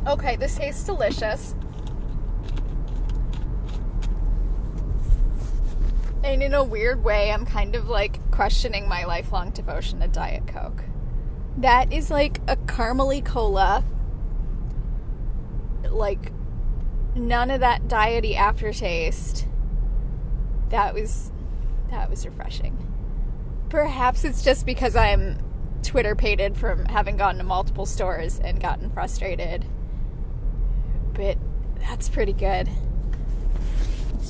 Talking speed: 100 wpm